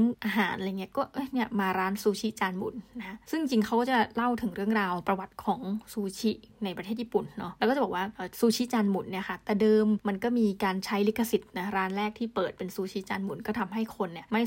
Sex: female